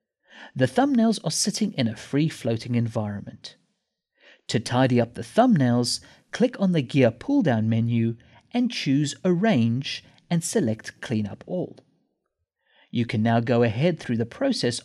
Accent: British